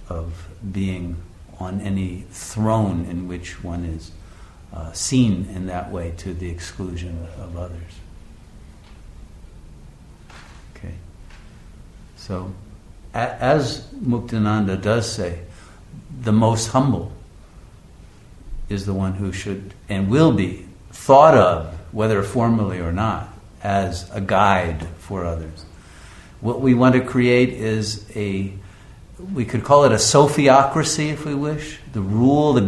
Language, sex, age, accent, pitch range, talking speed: English, male, 60-79, American, 90-125 Hz, 120 wpm